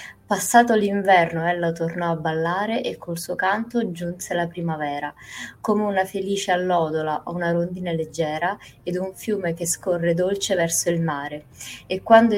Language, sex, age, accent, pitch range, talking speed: Italian, female, 20-39, native, 170-195 Hz, 155 wpm